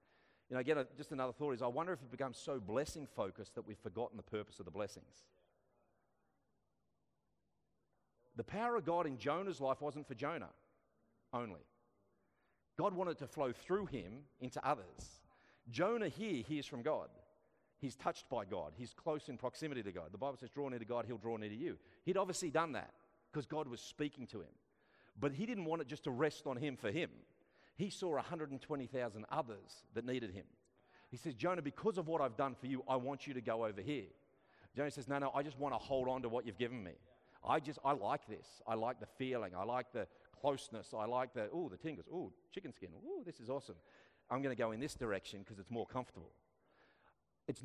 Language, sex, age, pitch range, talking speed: English, male, 40-59, 120-155 Hz, 210 wpm